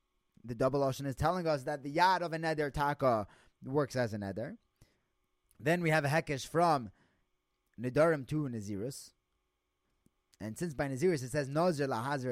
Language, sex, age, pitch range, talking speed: English, male, 30-49, 110-165 Hz, 165 wpm